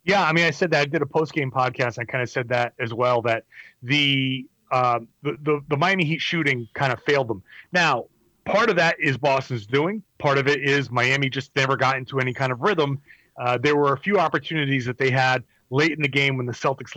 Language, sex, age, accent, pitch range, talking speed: English, male, 30-49, American, 130-165 Hz, 235 wpm